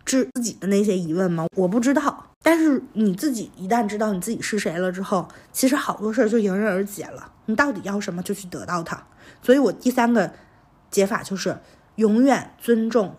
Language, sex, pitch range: Chinese, female, 185-245 Hz